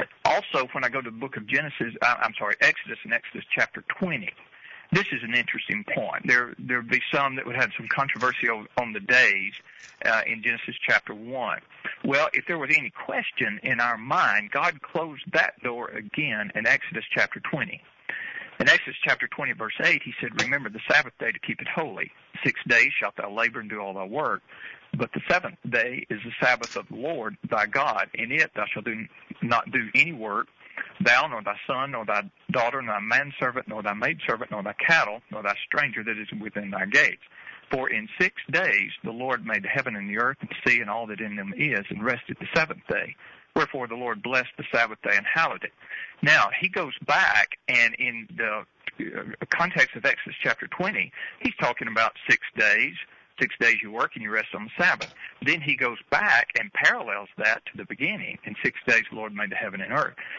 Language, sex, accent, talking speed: English, male, American, 210 wpm